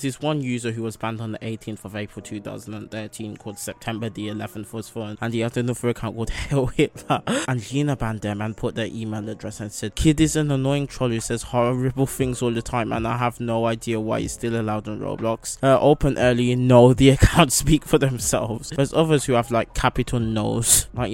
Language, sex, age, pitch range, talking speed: English, male, 20-39, 110-125 Hz, 220 wpm